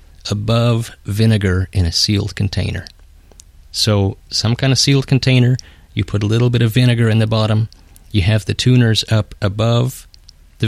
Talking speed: 165 wpm